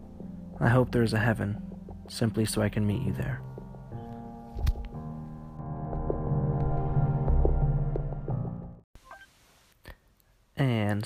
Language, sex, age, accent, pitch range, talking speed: English, male, 20-39, American, 100-120 Hz, 75 wpm